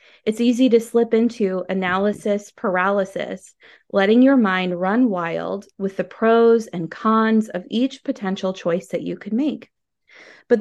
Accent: American